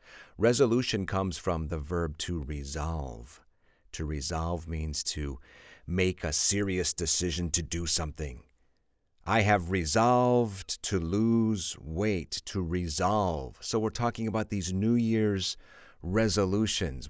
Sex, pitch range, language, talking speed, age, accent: male, 80-105 Hz, English, 120 wpm, 50-69, American